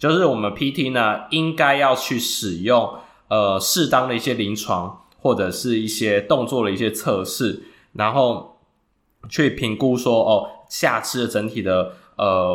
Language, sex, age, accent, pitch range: Chinese, male, 20-39, native, 100-125 Hz